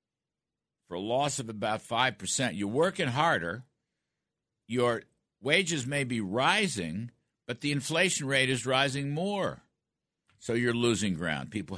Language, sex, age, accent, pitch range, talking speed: English, male, 60-79, American, 95-130 Hz, 130 wpm